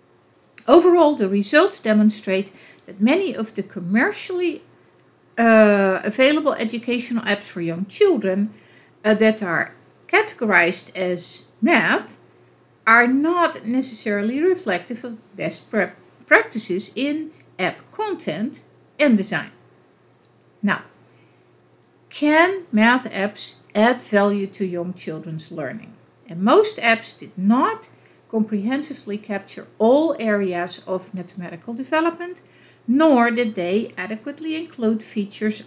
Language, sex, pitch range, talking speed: English, female, 185-255 Hz, 105 wpm